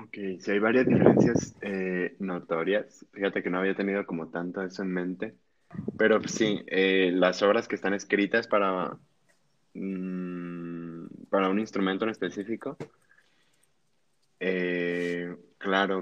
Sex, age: male, 20-39